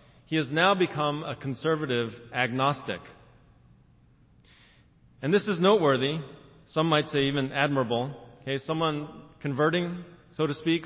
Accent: American